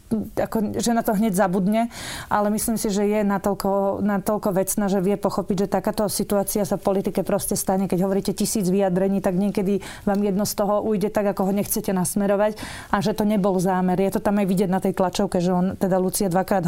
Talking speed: 210 wpm